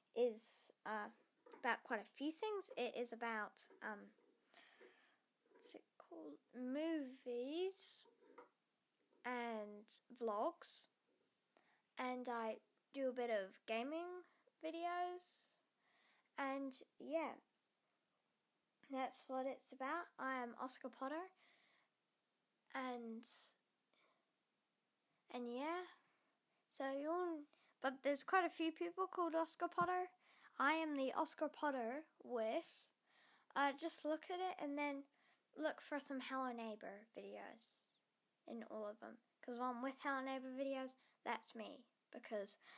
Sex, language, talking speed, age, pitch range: female, English, 115 wpm, 10-29, 245-325 Hz